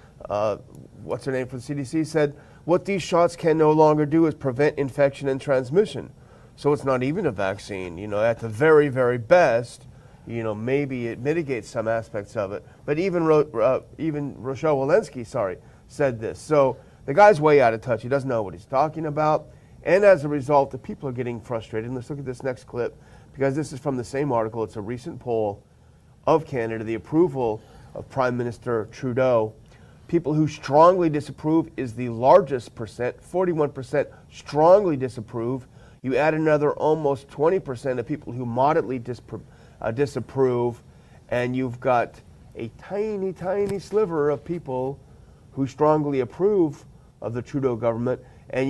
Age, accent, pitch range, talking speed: 40-59, American, 120-150 Hz, 175 wpm